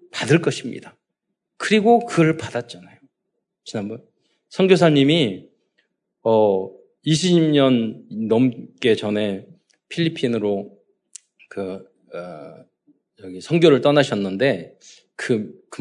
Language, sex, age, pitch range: Korean, male, 40-59, 105-175 Hz